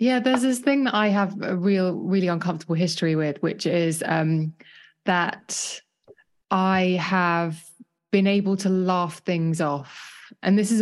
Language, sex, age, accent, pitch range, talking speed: English, female, 20-39, British, 160-190 Hz, 155 wpm